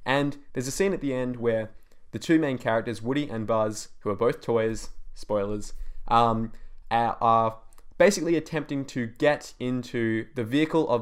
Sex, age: male, 20-39